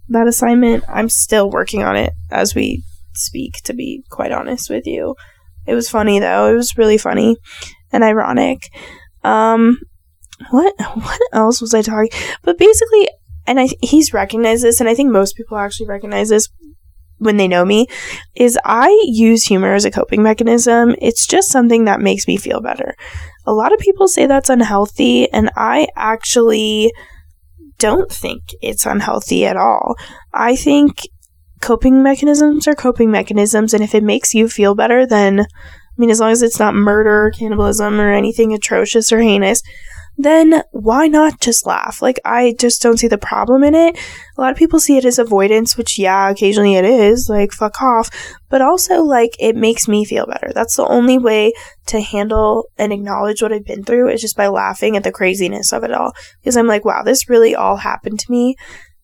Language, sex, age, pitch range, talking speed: English, female, 10-29, 205-245 Hz, 185 wpm